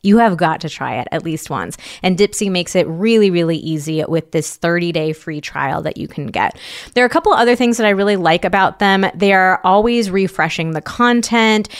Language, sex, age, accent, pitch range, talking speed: English, female, 20-39, American, 165-215 Hz, 225 wpm